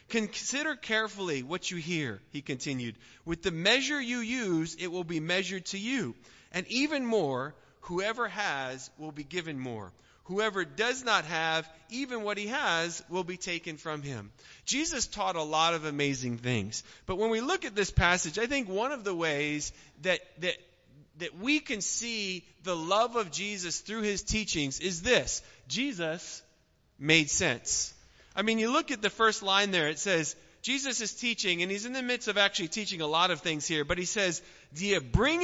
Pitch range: 160-225 Hz